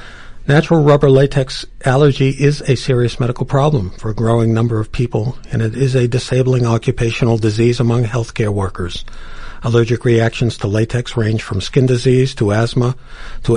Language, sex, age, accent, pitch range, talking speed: English, male, 50-69, American, 115-130 Hz, 160 wpm